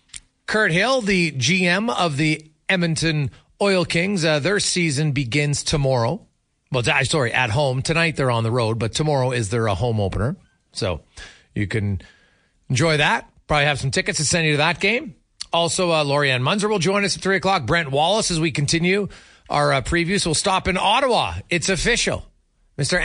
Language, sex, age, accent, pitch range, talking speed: English, male, 40-59, American, 145-190 Hz, 180 wpm